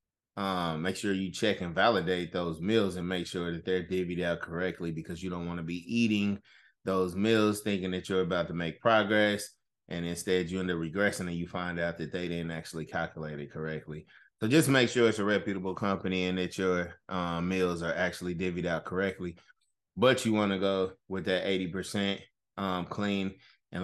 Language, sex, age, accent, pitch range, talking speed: English, male, 20-39, American, 90-100 Hz, 200 wpm